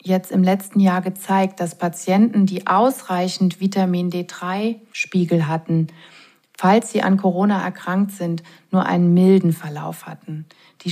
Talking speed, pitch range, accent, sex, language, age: 135 wpm, 170-195 Hz, German, female, German, 30-49